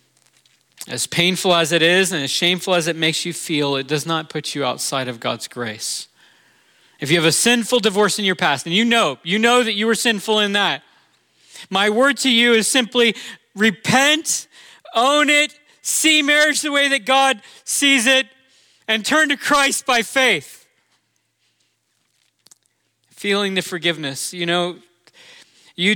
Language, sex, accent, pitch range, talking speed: English, male, American, 150-225 Hz, 165 wpm